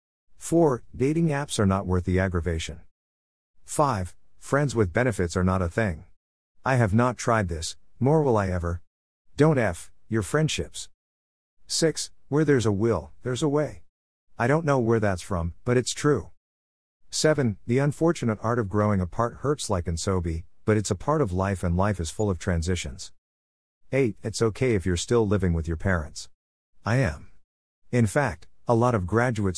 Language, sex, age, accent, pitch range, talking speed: English, male, 50-69, American, 85-115 Hz, 175 wpm